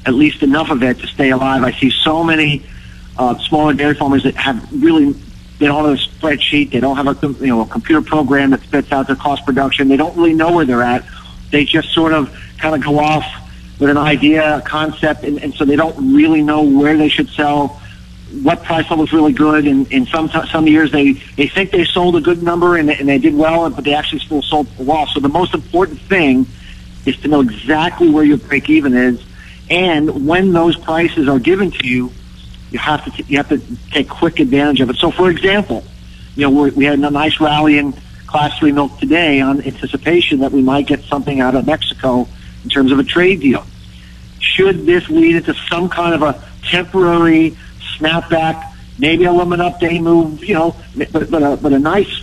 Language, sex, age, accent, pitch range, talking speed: English, male, 50-69, American, 140-170 Hz, 220 wpm